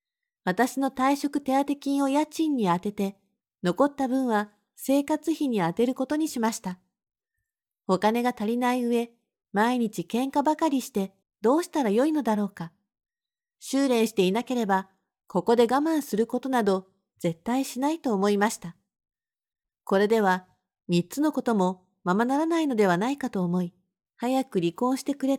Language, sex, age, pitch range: Japanese, female, 40-59, 195-270 Hz